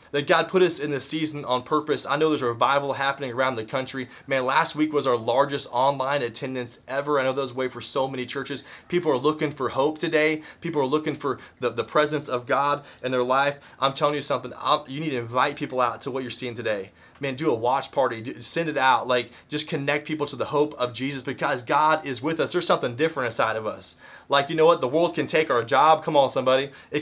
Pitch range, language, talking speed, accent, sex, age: 130-155 Hz, English, 245 wpm, American, male, 30-49